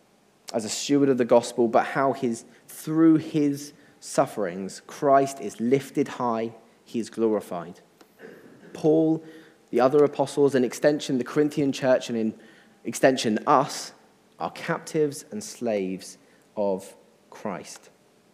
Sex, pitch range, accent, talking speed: male, 110-145 Hz, British, 120 wpm